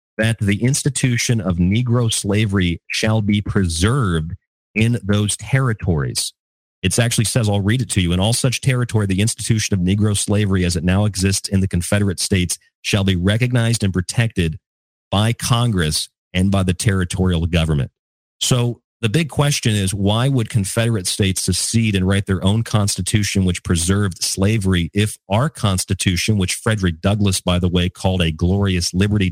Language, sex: English, male